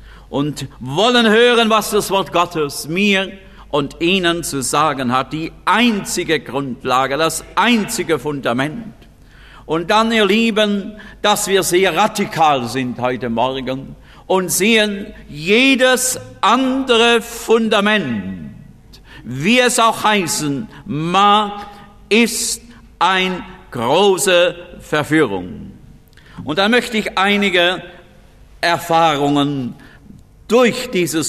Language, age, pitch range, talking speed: German, 50-69, 145-215 Hz, 100 wpm